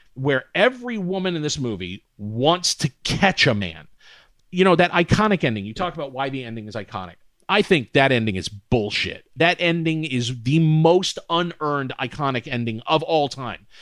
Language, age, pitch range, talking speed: English, 40-59, 120-185 Hz, 180 wpm